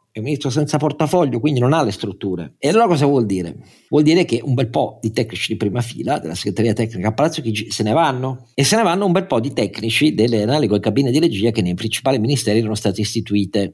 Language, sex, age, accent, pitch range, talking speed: Italian, male, 50-69, native, 105-150 Hz, 250 wpm